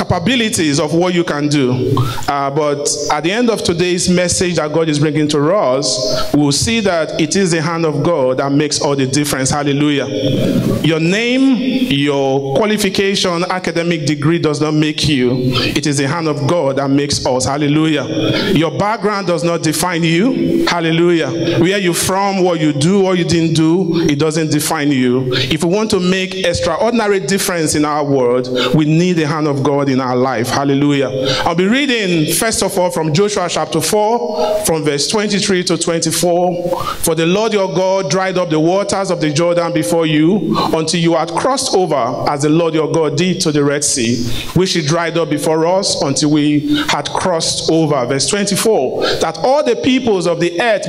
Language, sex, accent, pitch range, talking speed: English, male, Nigerian, 150-185 Hz, 190 wpm